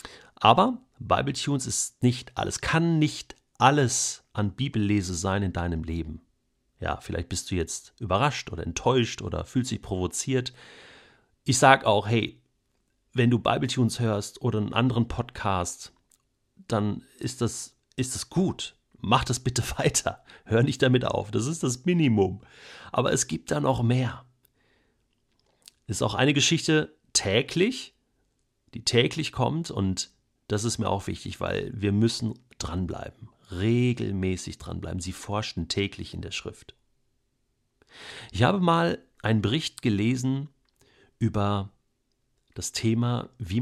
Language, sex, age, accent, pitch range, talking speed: German, male, 40-59, German, 100-130 Hz, 140 wpm